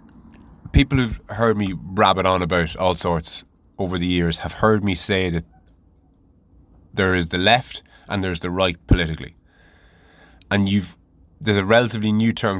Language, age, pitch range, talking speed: English, 20-39, 85-105 Hz, 155 wpm